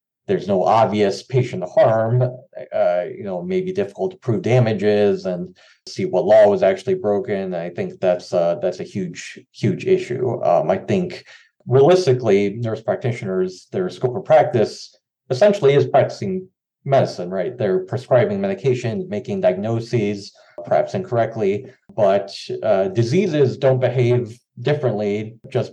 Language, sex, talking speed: English, male, 135 wpm